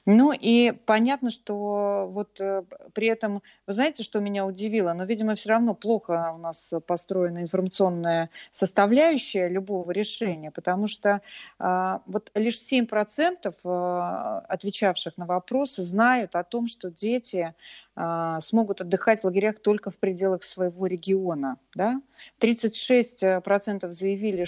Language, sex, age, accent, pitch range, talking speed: Russian, female, 30-49, native, 175-215 Hz, 120 wpm